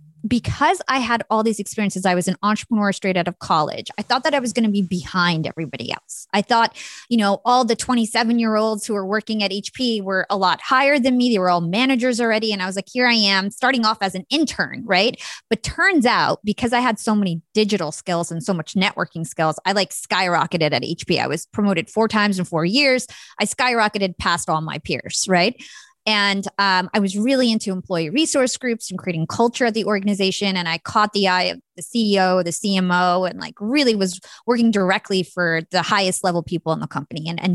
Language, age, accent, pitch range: English, 20-39, American, 185-230 Hz